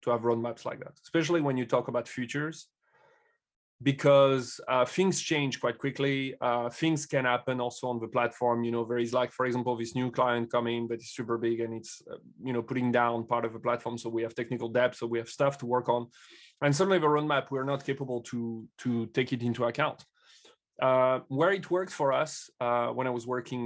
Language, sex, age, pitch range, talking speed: English, male, 30-49, 120-145 Hz, 220 wpm